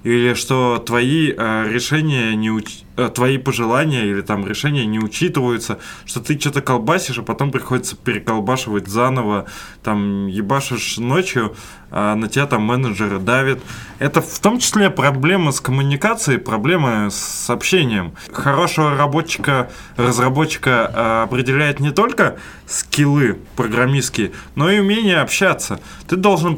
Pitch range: 115-150 Hz